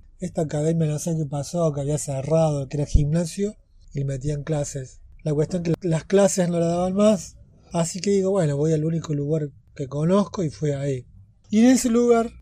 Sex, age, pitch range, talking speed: male, 30-49, 145-190 Hz, 210 wpm